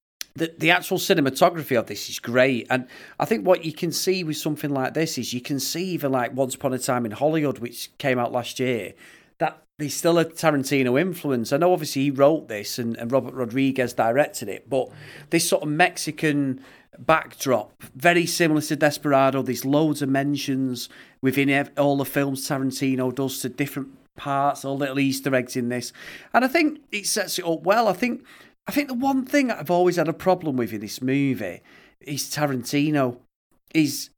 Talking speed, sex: 195 wpm, male